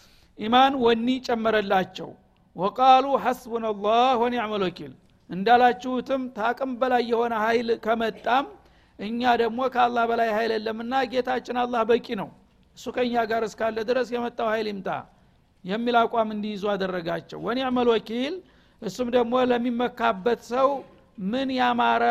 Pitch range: 215-245 Hz